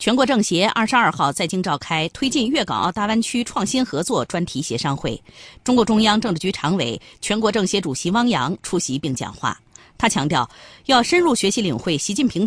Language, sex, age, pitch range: Chinese, female, 30-49, 155-220 Hz